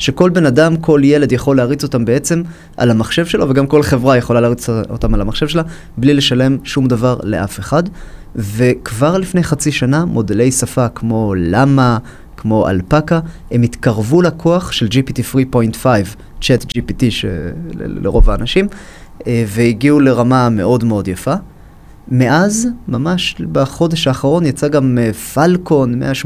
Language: Hebrew